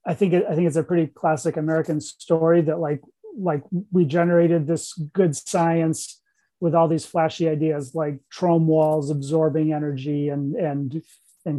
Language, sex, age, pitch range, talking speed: English, male, 30-49, 155-170 Hz, 165 wpm